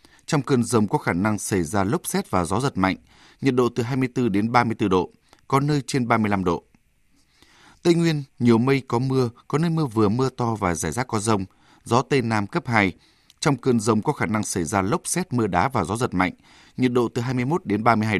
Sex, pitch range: male, 105-130 Hz